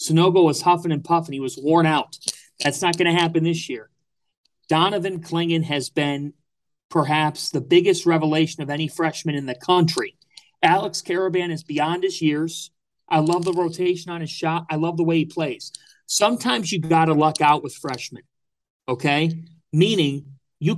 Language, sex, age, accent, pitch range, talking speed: English, male, 40-59, American, 150-185 Hz, 175 wpm